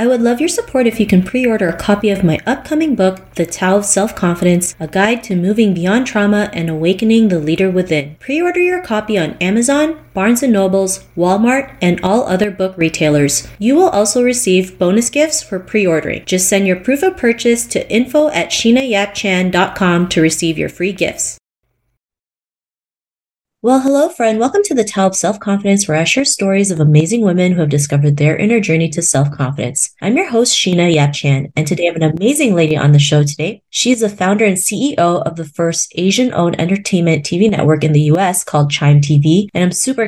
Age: 30-49